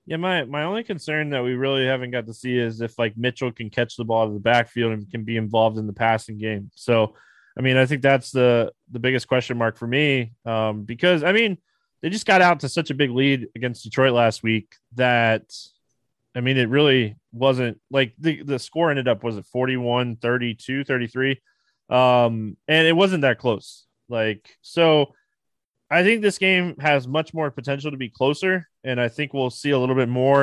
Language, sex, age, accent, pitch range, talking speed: English, male, 20-39, American, 120-150 Hz, 210 wpm